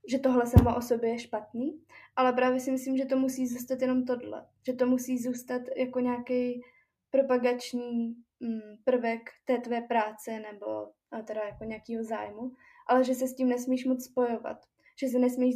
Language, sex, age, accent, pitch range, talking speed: Czech, female, 20-39, native, 225-250 Hz, 170 wpm